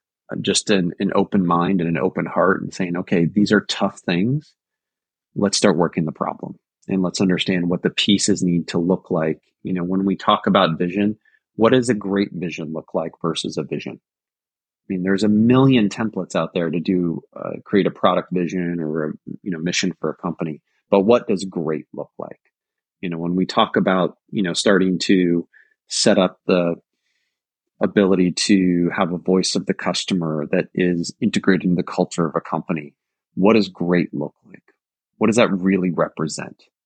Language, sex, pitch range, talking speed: English, male, 85-100 Hz, 190 wpm